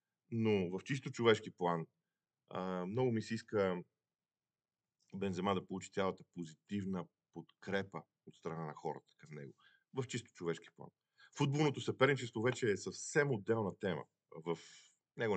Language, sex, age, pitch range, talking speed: Bulgarian, male, 40-59, 85-110 Hz, 135 wpm